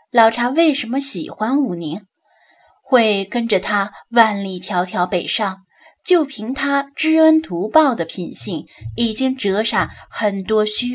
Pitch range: 195-275 Hz